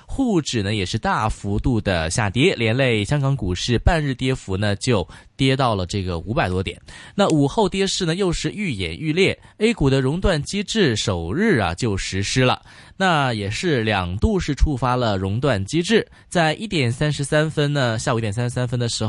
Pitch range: 105-155 Hz